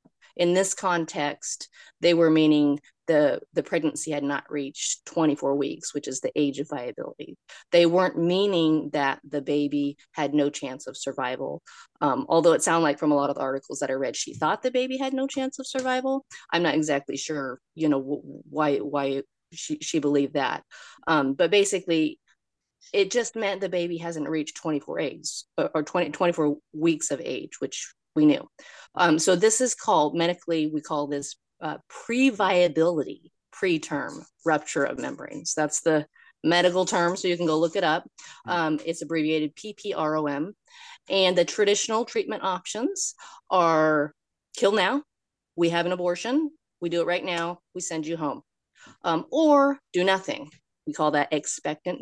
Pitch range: 150-195 Hz